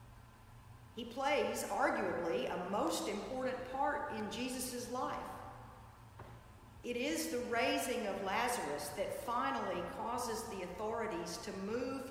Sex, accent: female, American